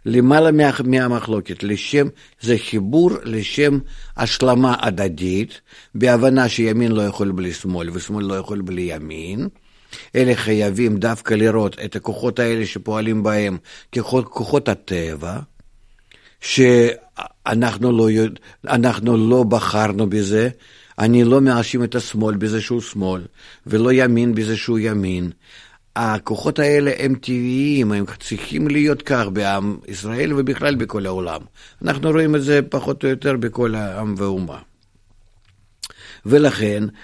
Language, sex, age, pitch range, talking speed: Hebrew, male, 50-69, 100-130 Hz, 120 wpm